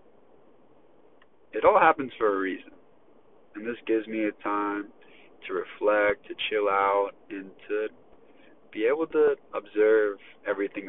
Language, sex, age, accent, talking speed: English, male, 30-49, American, 130 wpm